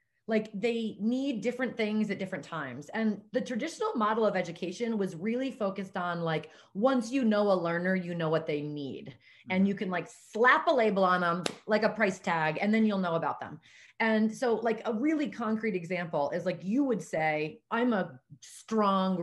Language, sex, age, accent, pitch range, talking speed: English, female, 30-49, American, 175-225 Hz, 195 wpm